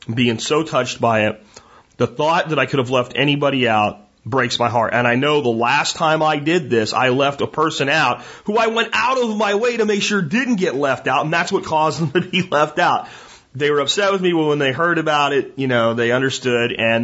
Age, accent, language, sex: 30-49, American, English, male